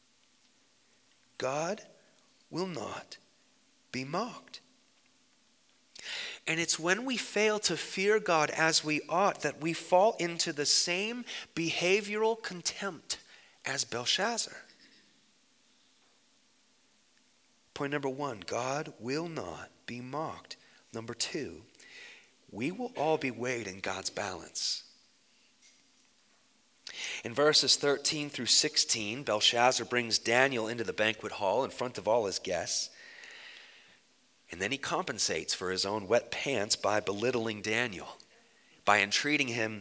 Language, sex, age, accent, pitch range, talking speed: English, male, 30-49, American, 120-195 Hz, 115 wpm